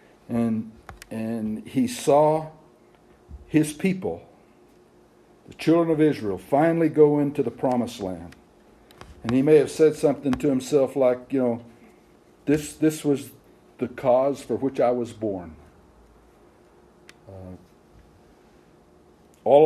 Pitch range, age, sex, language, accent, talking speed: 105-155 Hz, 60-79, male, English, American, 115 wpm